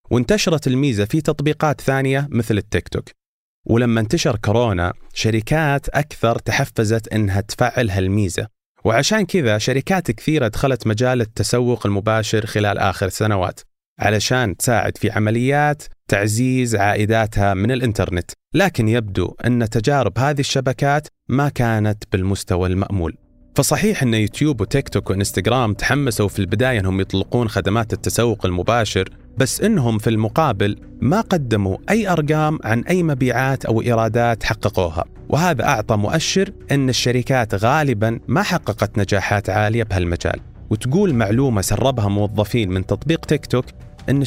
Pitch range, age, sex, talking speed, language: 105-135 Hz, 30-49, male, 125 wpm, Arabic